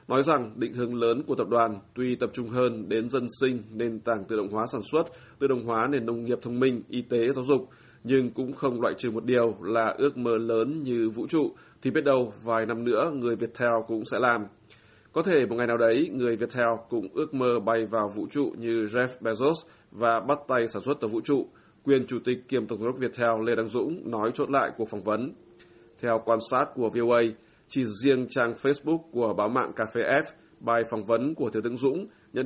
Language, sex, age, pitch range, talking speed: Vietnamese, male, 20-39, 115-125 Hz, 225 wpm